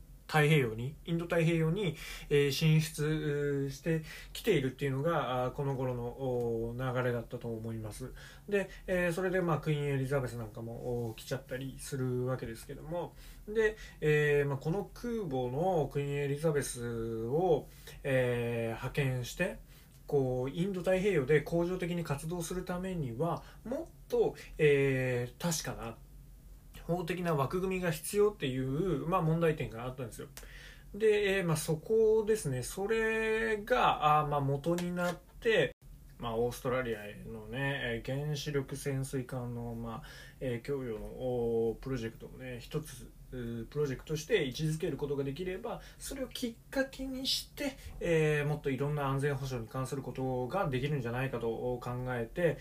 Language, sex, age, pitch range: Japanese, male, 20-39, 125-170 Hz